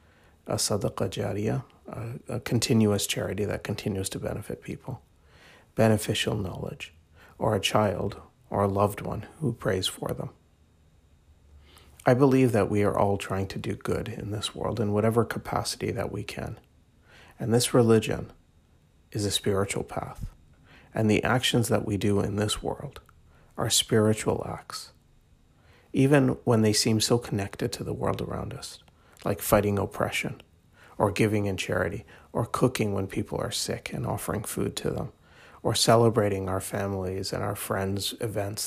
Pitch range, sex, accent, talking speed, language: 95-115 Hz, male, American, 155 wpm, English